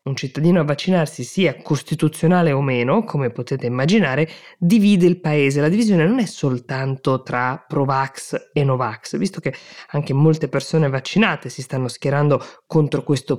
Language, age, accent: Italian, 20-39, native